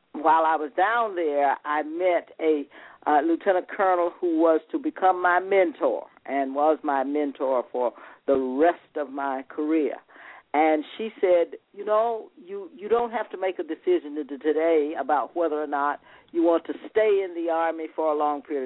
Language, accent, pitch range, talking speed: English, American, 150-195 Hz, 180 wpm